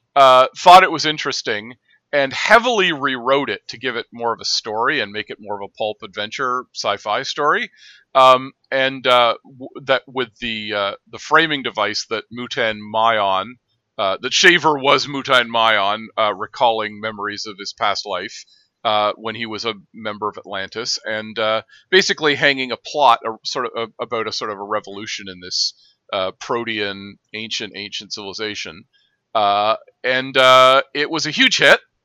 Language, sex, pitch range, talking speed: English, male, 115-150 Hz, 165 wpm